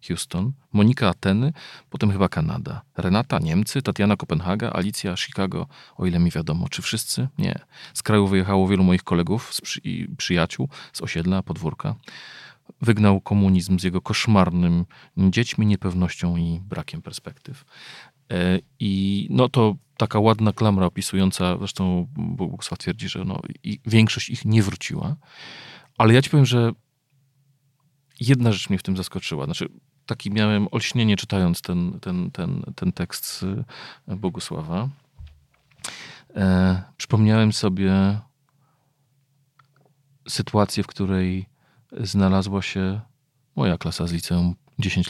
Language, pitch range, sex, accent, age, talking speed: Polish, 95-135 Hz, male, native, 40-59, 120 wpm